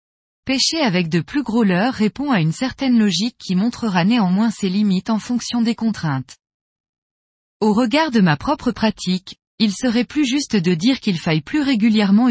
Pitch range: 185-240 Hz